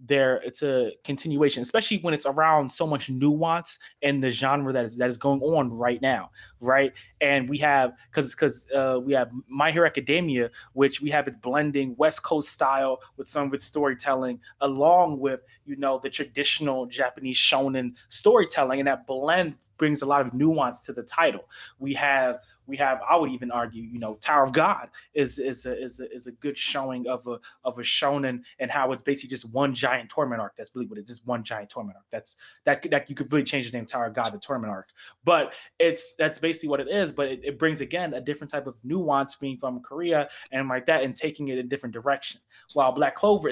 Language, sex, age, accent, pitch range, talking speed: English, male, 20-39, American, 130-150 Hz, 220 wpm